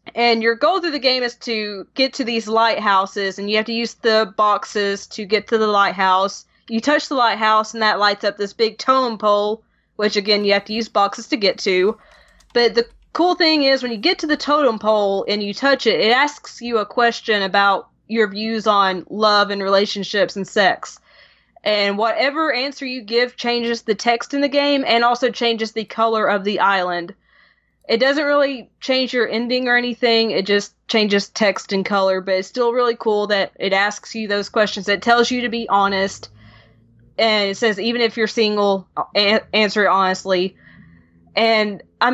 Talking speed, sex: 195 wpm, female